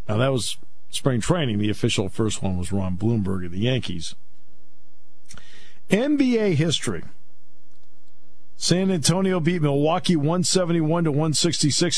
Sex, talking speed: male, 120 wpm